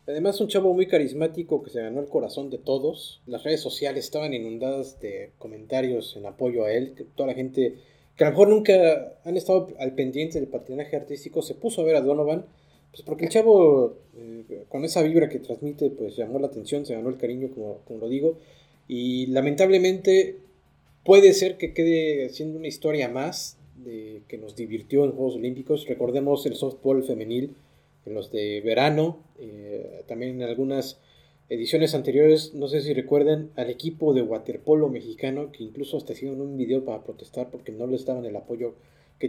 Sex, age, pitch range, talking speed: male, 30-49, 125-160 Hz, 185 wpm